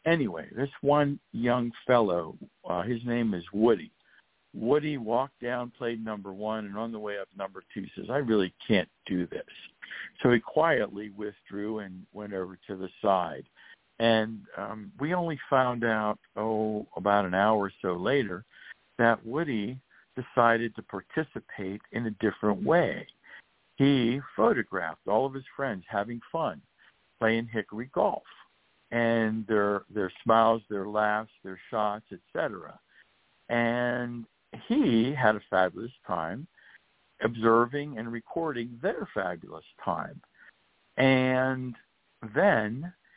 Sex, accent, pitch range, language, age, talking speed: male, American, 105-125 Hz, English, 60-79, 135 wpm